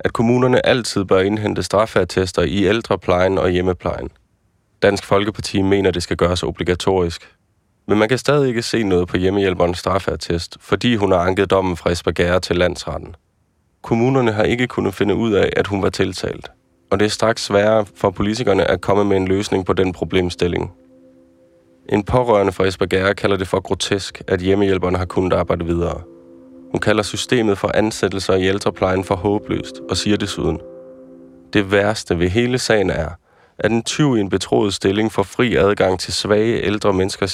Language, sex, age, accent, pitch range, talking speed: Danish, male, 20-39, native, 90-105 Hz, 175 wpm